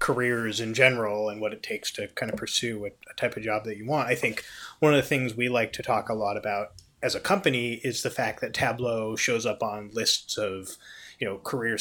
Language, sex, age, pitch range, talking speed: English, male, 20-39, 105-120 Hz, 240 wpm